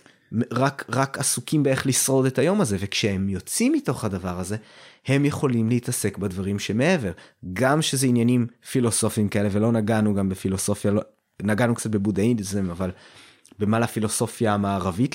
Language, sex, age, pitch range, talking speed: Hebrew, male, 30-49, 100-135 Hz, 140 wpm